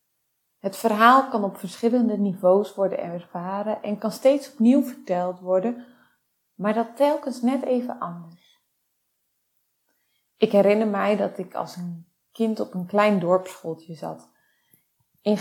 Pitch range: 180-220 Hz